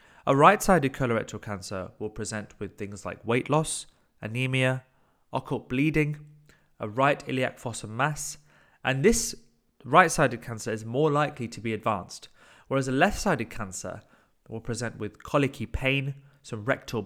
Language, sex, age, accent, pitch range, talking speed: English, male, 30-49, British, 110-135 Hz, 140 wpm